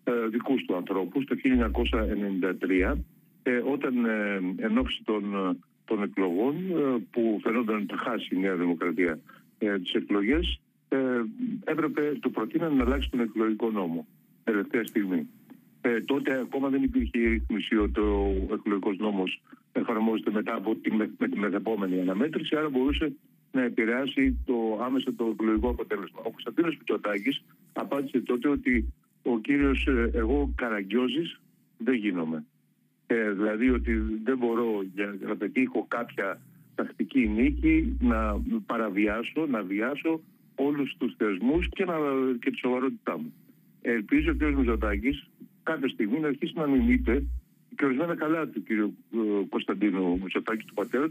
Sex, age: male, 50-69